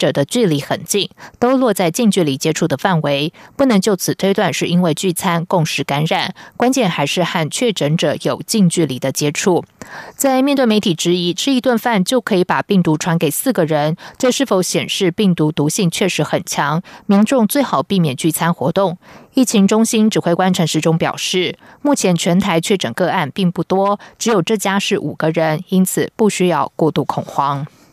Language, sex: German, female